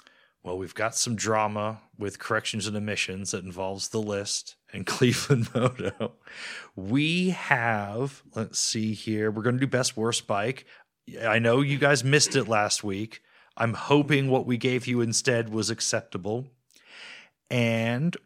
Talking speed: 150 wpm